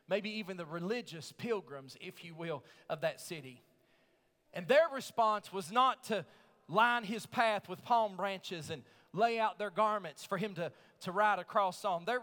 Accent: American